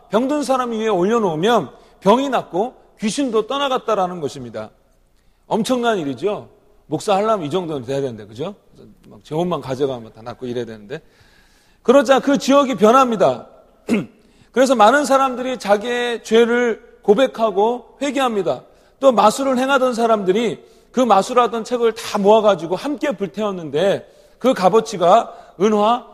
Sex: male